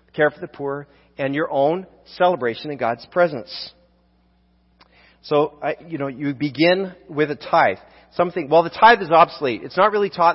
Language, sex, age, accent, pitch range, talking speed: English, male, 40-59, American, 130-170 Hz, 175 wpm